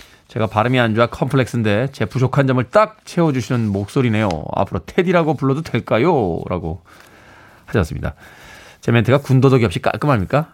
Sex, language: male, Korean